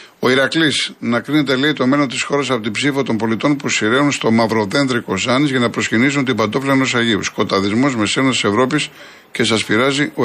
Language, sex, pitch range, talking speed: Greek, male, 110-135 Hz, 195 wpm